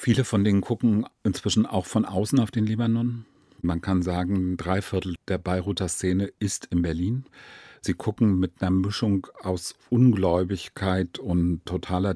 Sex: male